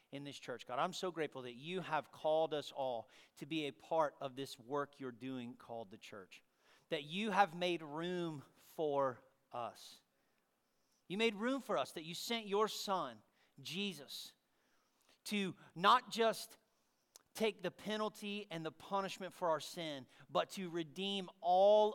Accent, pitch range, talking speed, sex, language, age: American, 150-195 Hz, 160 wpm, male, English, 40-59